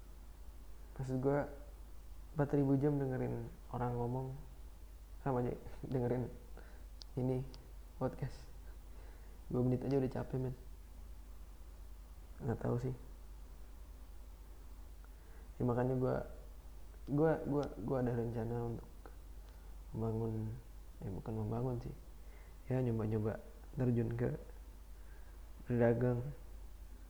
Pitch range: 75-125 Hz